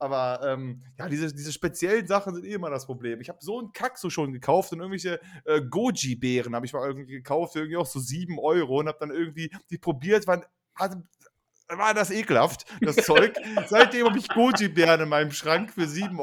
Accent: German